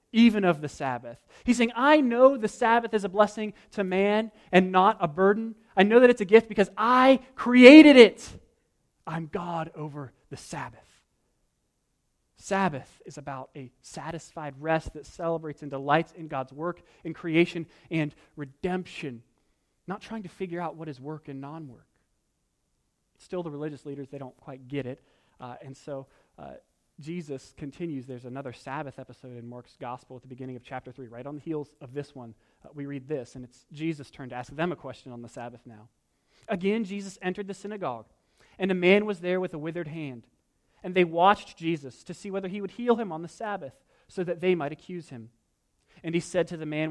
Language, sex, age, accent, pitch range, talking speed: English, male, 30-49, American, 135-195 Hz, 195 wpm